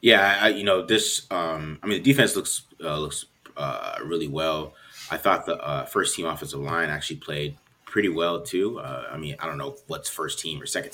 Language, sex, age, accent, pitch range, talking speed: English, male, 30-49, American, 85-120 Hz, 220 wpm